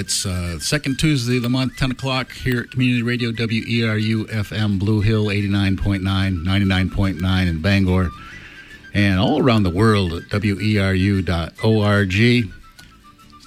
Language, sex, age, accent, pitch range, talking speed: English, male, 50-69, American, 95-120 Hz, 125 wpm